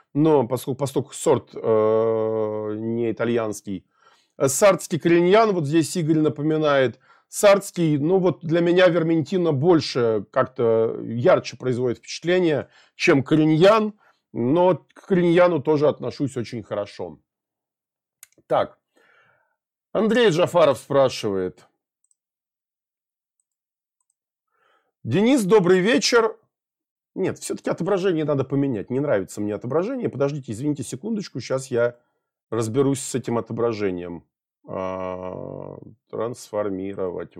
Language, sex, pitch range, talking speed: Russian, male, 110-180 Hz, 95 wpm